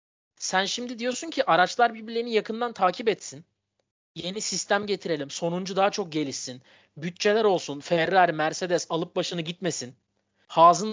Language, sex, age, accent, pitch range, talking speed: Turkish, male, 30-49, native, 175-230 Hz, 130 wpm